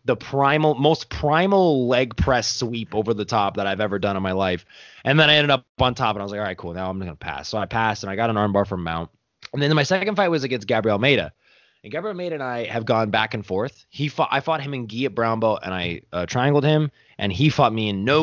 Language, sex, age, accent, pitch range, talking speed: English, male, 20-39, American, 100-140 Hz, 295 wpm